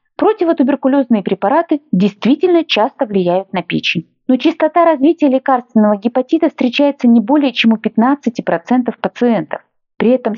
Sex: female